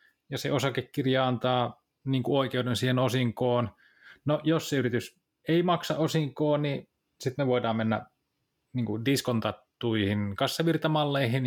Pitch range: 115-145 Hz